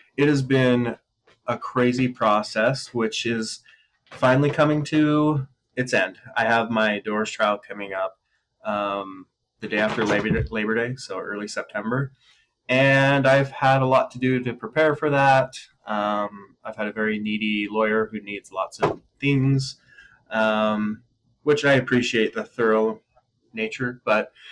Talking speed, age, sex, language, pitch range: 150 wpm, 20-39, male, English, 110-130 Hz